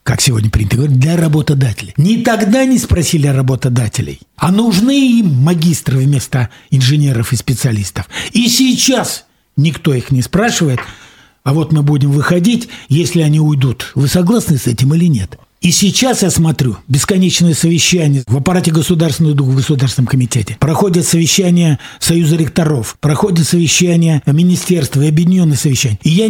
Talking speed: 150 wpm